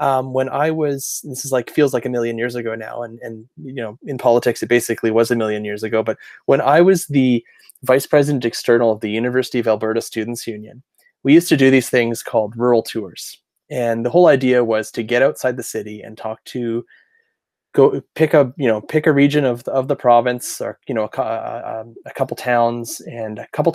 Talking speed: 220 wpm